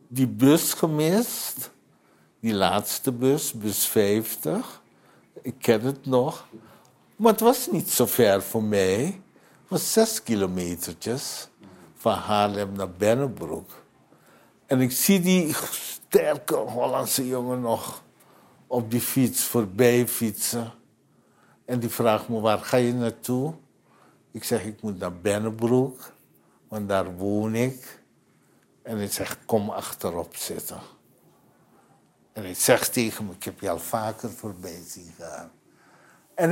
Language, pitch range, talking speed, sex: Dutch, 110-150 Hz, 130 wpm, male